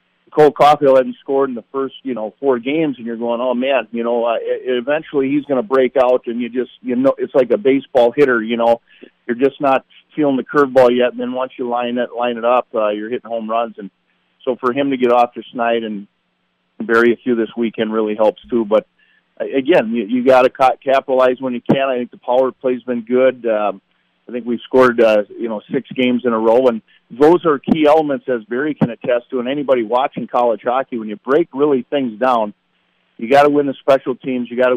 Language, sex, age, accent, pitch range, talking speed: English, male, 40-59, American, 115-130 Hz, 240 wpm